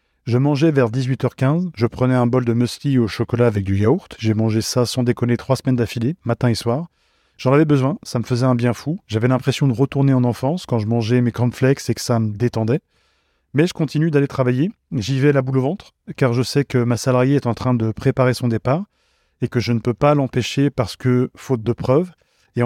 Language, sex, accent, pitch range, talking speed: French, male, French, 120-150 Hz, 235 wpm